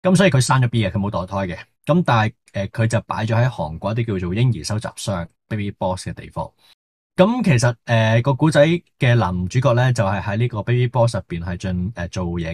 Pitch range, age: 95-125 Hz, 20-39